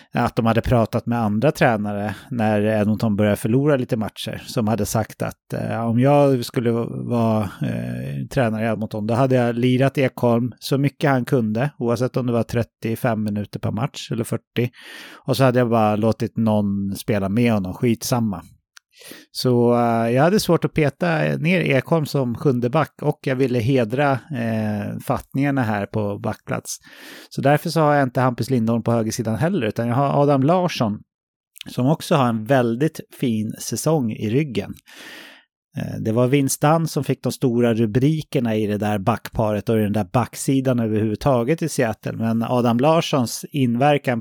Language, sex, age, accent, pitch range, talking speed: English, male, 30-49, Swedish, 110-135 Hz, 170 wpm